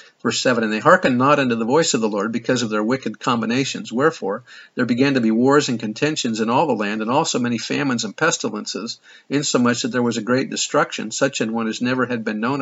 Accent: American